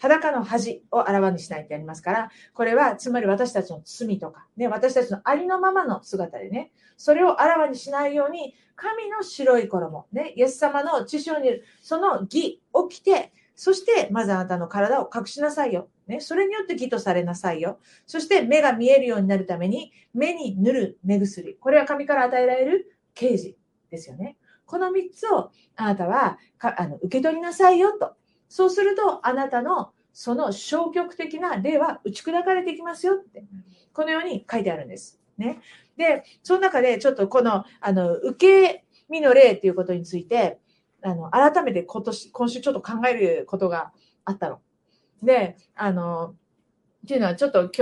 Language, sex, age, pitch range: Japanese, female, 40-59, 190-305 Hz